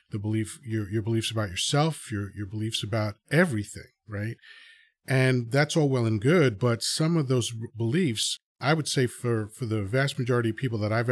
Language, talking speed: English, 195 wpm